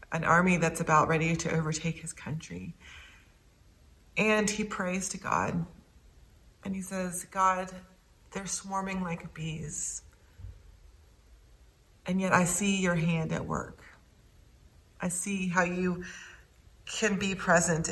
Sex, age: female, 30-49